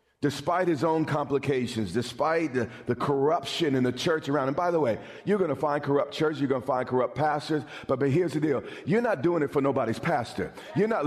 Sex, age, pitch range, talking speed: male, 50-69, 130-175 Hz, 230 wpm